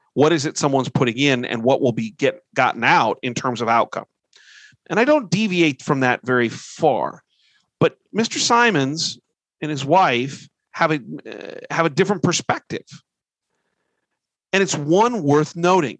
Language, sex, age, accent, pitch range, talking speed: English, male, 40-59, American, 135-185 Hz, 155 wpm